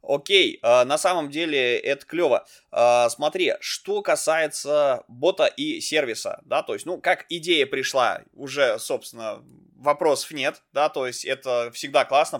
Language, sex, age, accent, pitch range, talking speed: Russian, male, 20-39, native, 120-180 Hz, 145 wpm